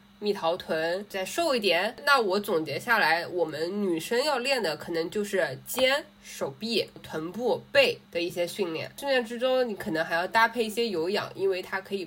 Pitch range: 170-215 Hz